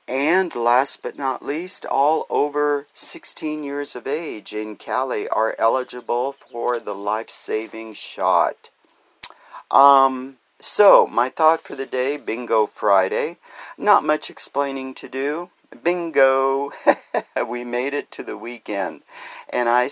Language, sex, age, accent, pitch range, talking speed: English, male, 50-69, American, 115-155 Hz, 125 wpm